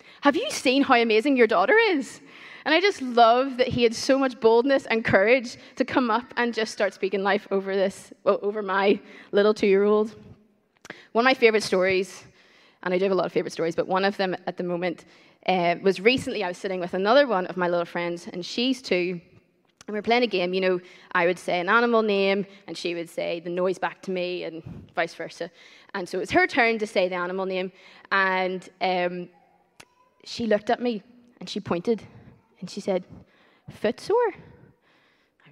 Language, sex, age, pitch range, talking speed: English, female, 20-39, 185-235 Hz, 210 wpm